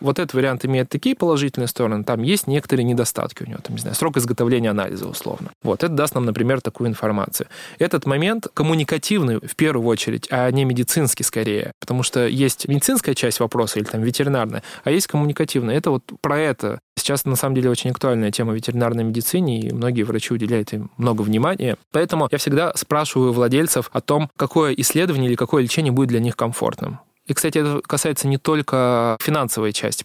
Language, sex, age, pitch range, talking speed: Russian, male, 20-39, 120-150 Hz, 185 wpm